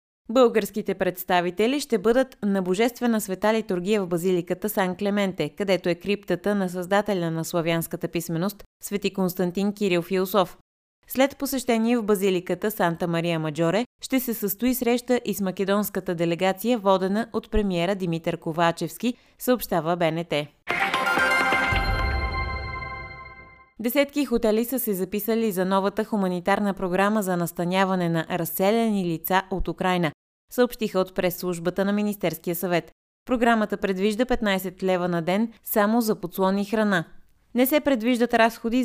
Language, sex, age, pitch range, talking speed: Bulgarian, female, 20-39, 175-220 Hz, 125 wpm